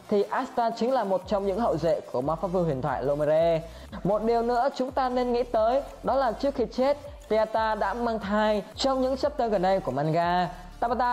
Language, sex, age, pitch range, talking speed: Vietnamese, female, 20-39, 175-240 Hz, 220 wpm